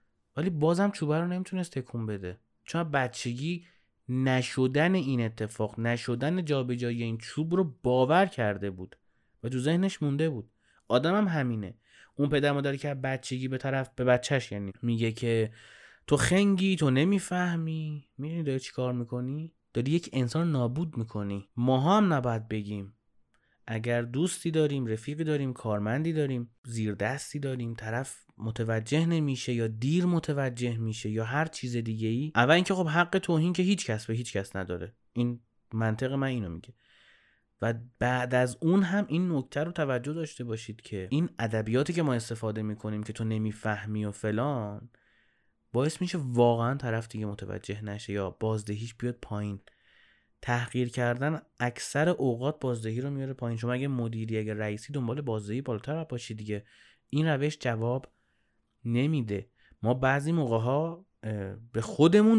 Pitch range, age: 110-150 Hz, 30-49